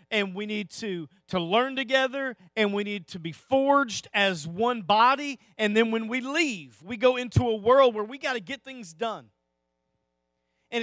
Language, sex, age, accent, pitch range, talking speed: English, male, 40-59, American, 145-245 Hz, 190 wpm